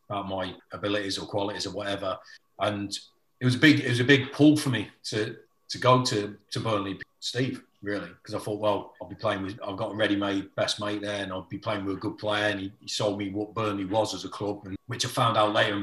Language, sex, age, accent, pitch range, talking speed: English, male, 40-59, British, 100-115 Hz, 260 wpm